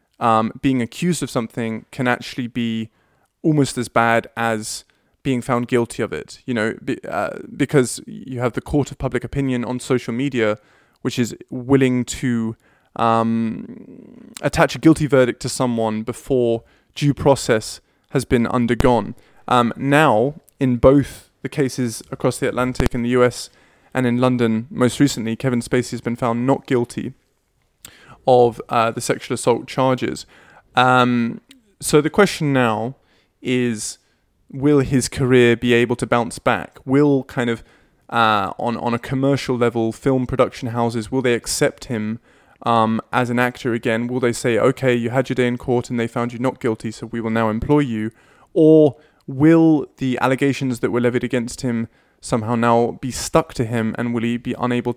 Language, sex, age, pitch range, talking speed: English, male, 20-39, 115-135 Hz, 170 wpm